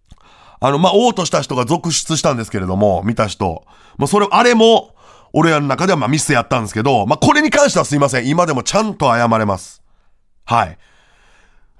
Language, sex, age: Japanese, male, 40-59